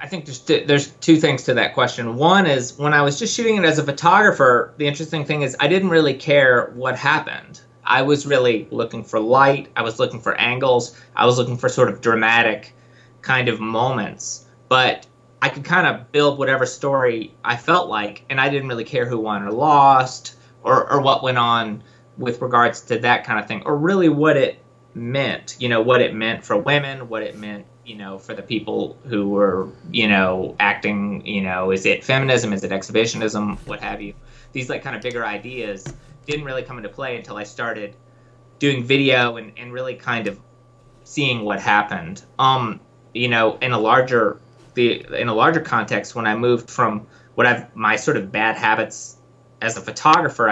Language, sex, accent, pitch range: English, male, American, 110-135 Hz